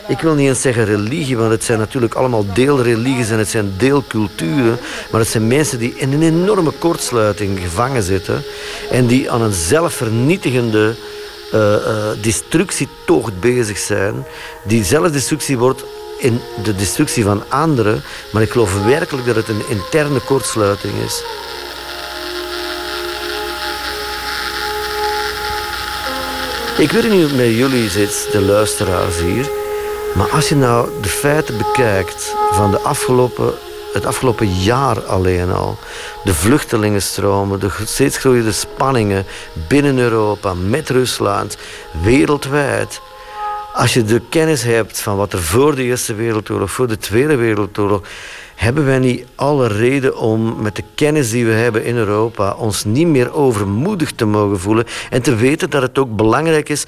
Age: 50-69